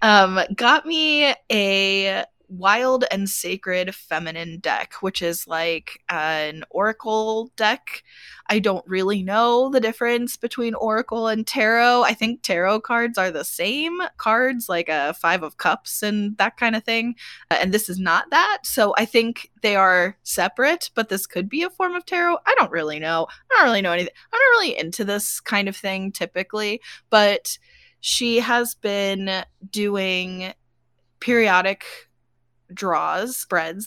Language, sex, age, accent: English, female, 20-39, American